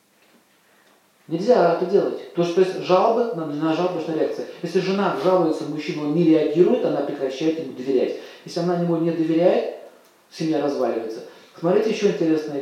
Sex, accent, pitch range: male, native, 150-195 Hz